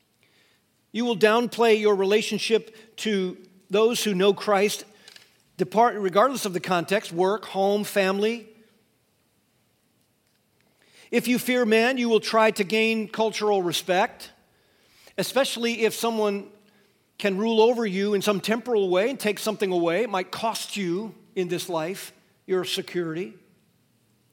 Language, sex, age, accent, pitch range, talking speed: English, male, 50-69, American, 175-220 Hz, 130 wpm